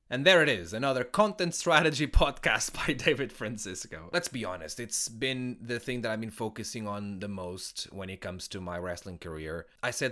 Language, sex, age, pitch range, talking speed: English, male, 30-49, 95-130 Hz, 200 wpm